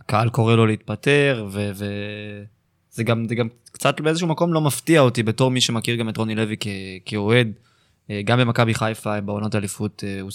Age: 20-39